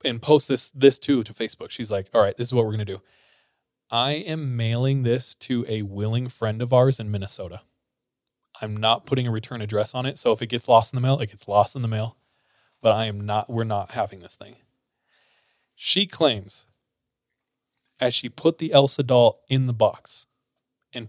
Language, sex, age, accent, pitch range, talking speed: English, male, 20-39, American, 110-135 Hz, 210 wpm